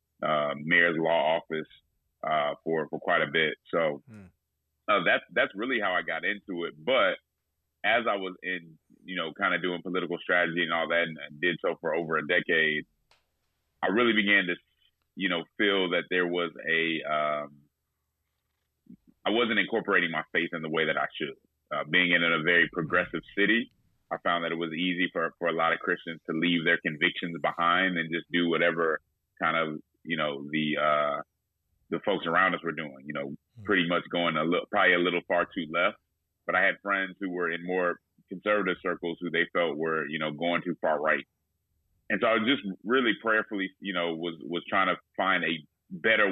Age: 30-49